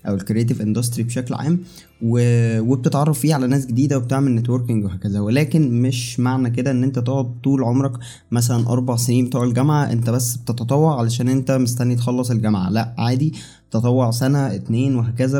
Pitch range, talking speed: 115-130 Hz, 165 wpm